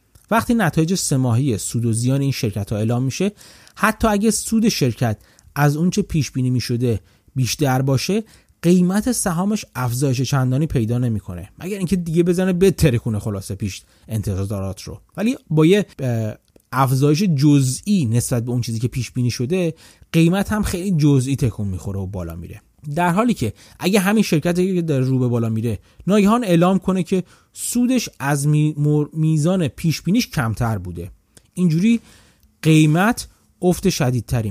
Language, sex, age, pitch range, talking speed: Persian, male, 30-49, 120-180 Hz, 150 wpm